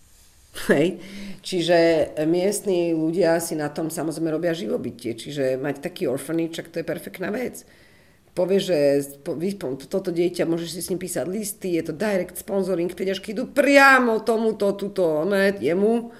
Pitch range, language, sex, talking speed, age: 140-195 Hz, Czech, female, 140 wpm, 40-59